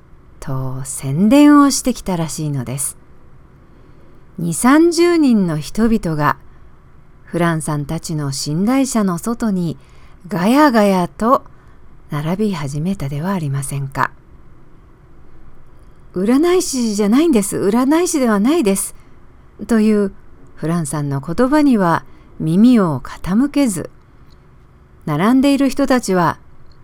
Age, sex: 50-69, female